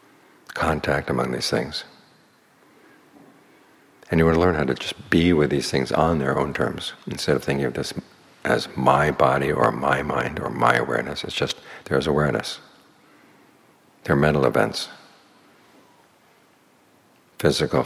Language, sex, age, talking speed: English, male, 60-79, 140 wpm